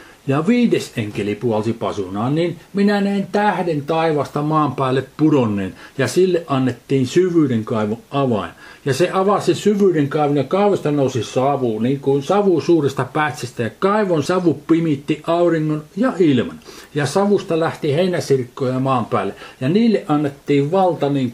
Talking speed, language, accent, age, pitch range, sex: 145 wpm, Finnish, native, 60-79, 130-180 Hz, male